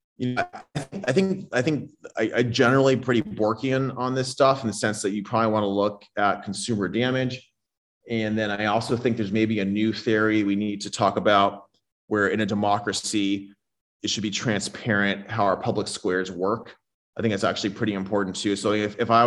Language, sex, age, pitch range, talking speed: English, male, 30-49, 100-115 Hz, 200 wpm